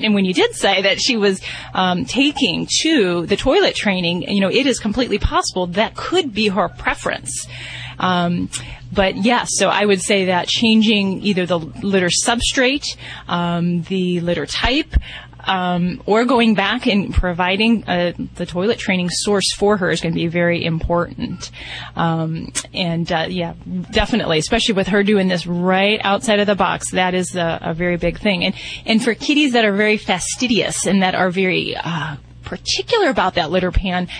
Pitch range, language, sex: 175-220 Hz, English, female